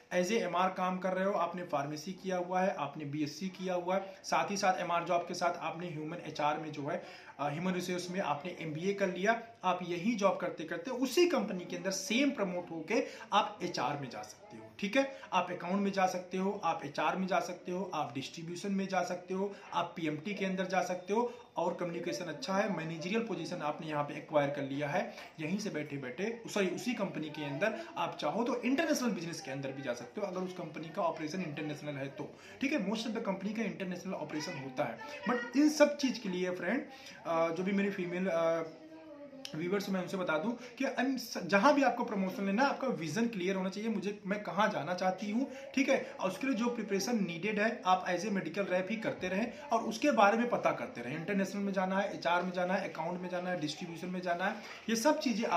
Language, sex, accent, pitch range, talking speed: Hindi, male, native, 175-225 Hz, 180 wpm